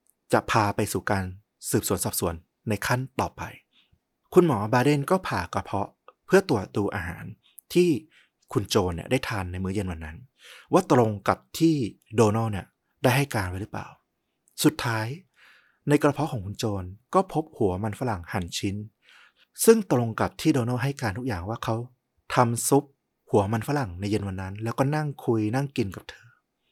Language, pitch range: Thai, 100-130 Hz